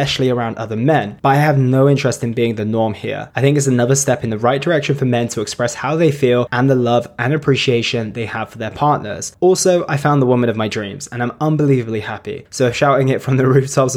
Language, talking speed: English, 255 wpm